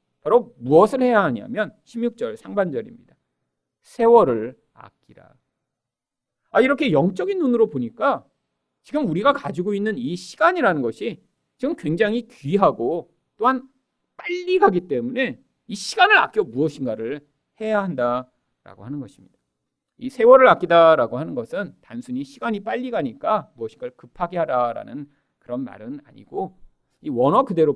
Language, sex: Korean, male